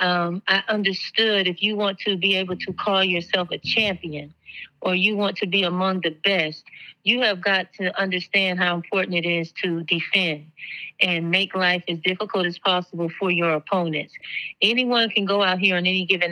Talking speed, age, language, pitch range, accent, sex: 190 wpm, 30-49, English, 180-215 Hz, American, female